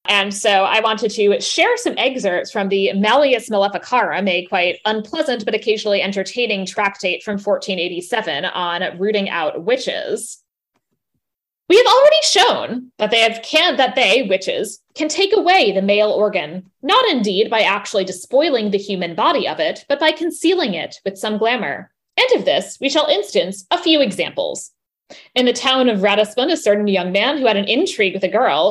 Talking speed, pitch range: 175 wpm, 195-290 Hz